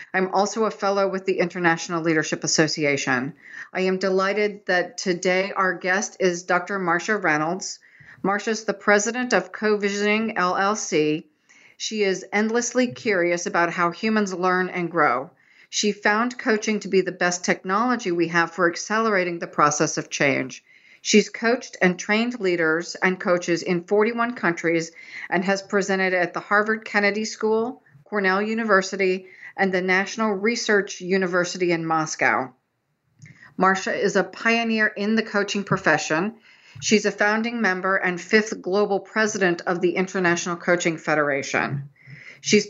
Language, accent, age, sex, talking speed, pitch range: English, American, 40-59, female, 140 wpm, 175-210 Hz